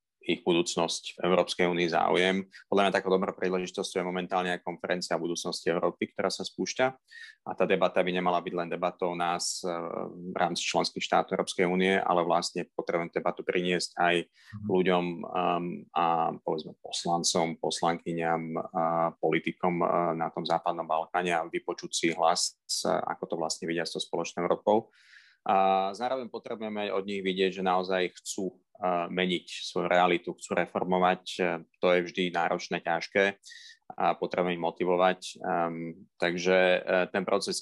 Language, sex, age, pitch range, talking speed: Slovak, male, 30-49, 85-100 Hz, 140 wpm